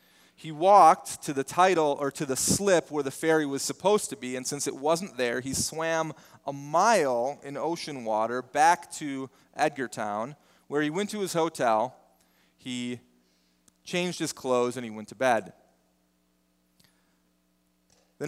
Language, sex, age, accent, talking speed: English, male, 30-49, American, 155 wpm